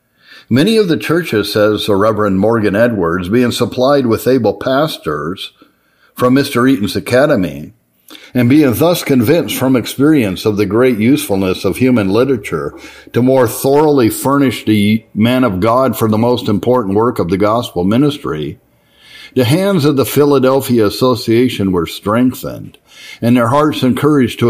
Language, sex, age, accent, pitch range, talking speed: English, male, 60-79, American, 105-130 Hz, 150 wpm